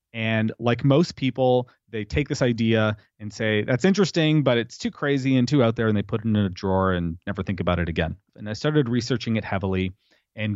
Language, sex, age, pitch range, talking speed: English, male, 30-49, 105-125 Hz, 225 wpm